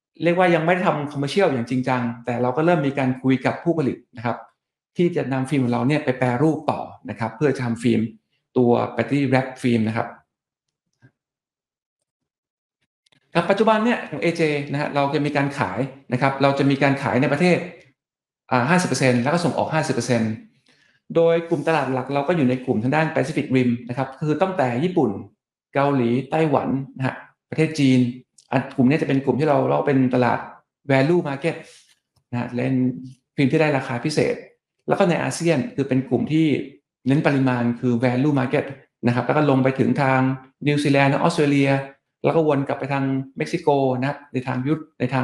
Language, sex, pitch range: Thai, male, 125-150 Hz